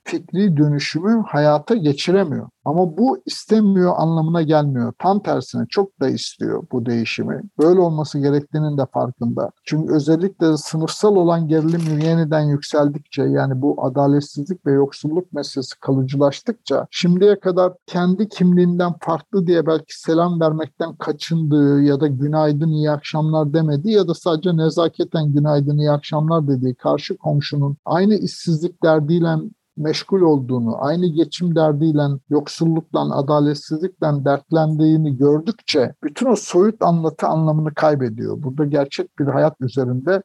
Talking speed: 125 wpm